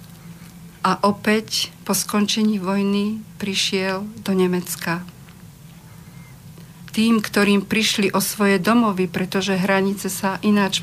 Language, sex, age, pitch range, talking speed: Slovak, female, 50-69, 165-205 Hz, 100 wpm